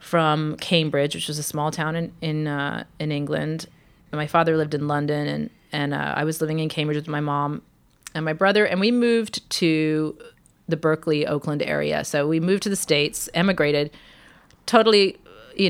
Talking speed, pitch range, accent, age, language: 185 wpm, 155-195 Hz, American, 30-49, English